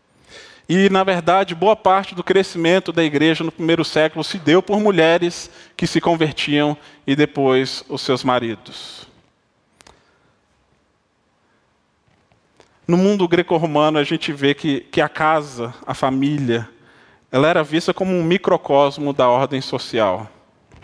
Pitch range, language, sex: 135-165 Hz, Portuguese, male